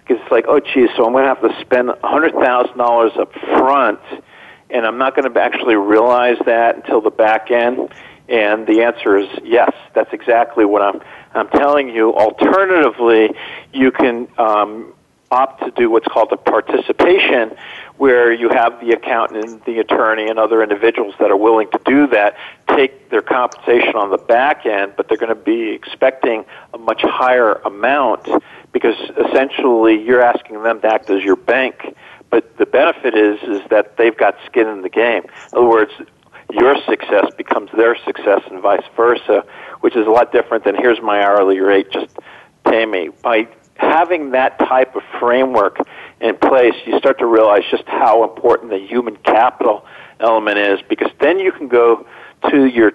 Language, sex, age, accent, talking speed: English, male, 50-69, American, 175 wpm